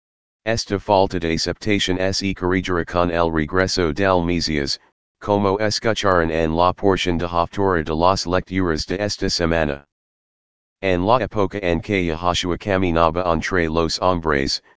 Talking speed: 140 wpm